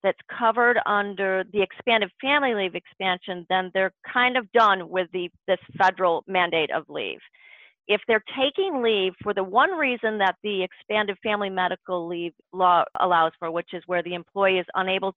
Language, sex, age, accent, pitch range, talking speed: English, female, 40-59, American, 175-220 Hz, 175 wpm